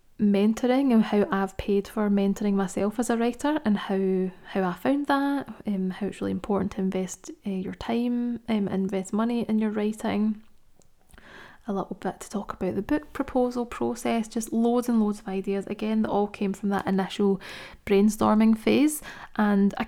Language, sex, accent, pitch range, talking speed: English, female, British, 195-220 Hz, 185 wpm